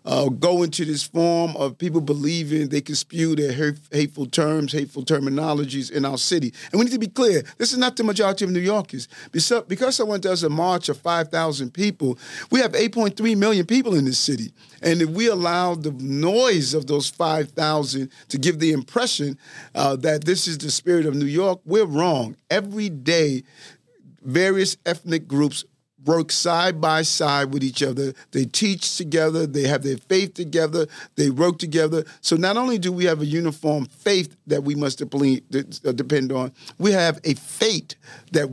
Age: 40-59